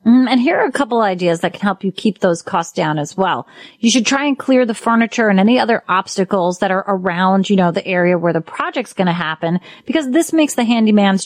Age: 30-49